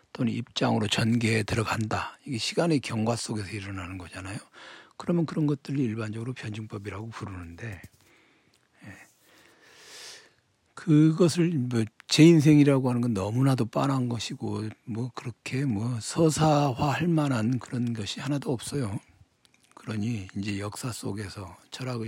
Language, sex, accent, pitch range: Korean, male, native, 100-125 Hz